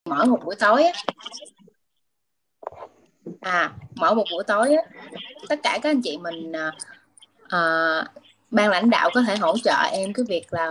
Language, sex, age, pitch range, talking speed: Vietnamese, female, 20-39, 185-285 Hz, 160 wpm